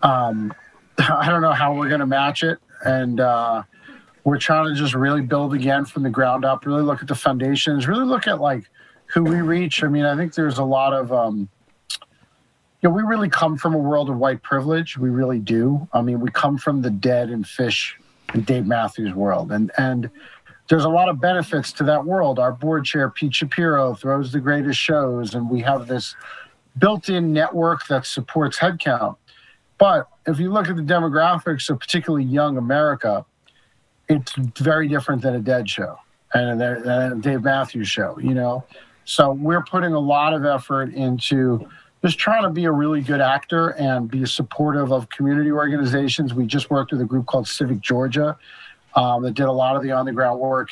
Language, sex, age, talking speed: English, male, 50-69, 200 wpm